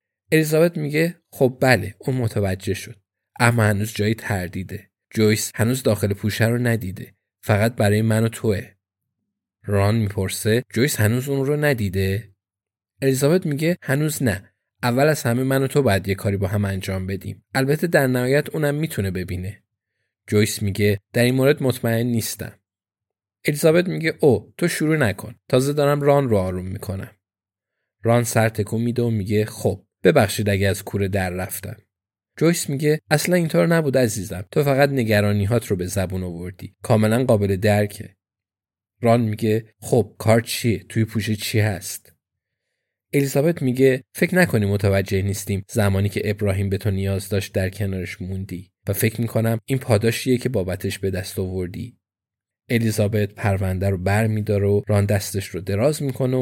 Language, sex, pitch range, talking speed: Persian, male, 100-125 Hz, 155 wpm